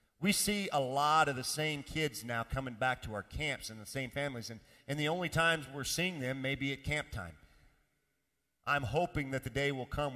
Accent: American